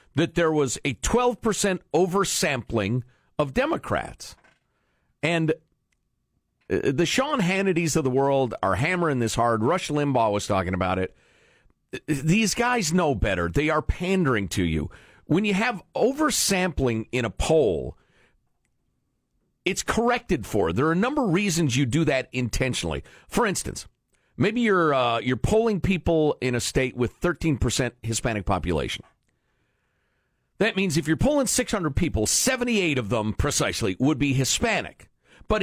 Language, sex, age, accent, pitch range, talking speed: English, male, 50-69, American, 125-190 Hz, 140 wpm